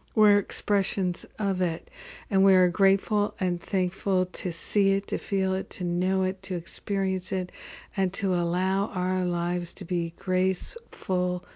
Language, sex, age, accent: English, female, 50-69, American